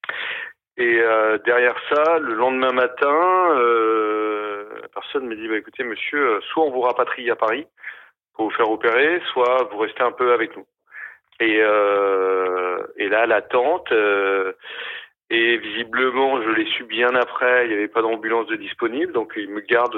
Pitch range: 105-165 Hz